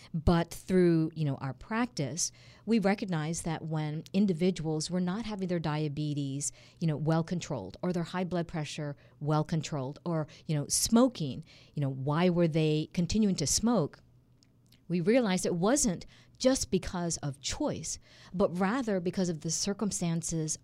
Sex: female